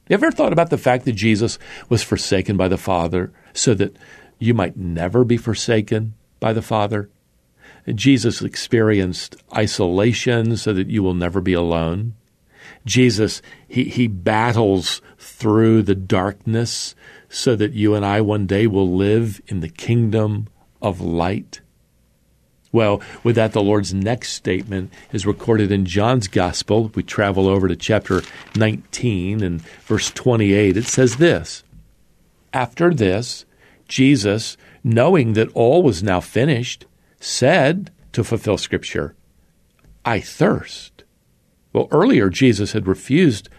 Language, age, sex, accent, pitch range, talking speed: English, 50-69, male, American, 100-120 Hz, 135 wpm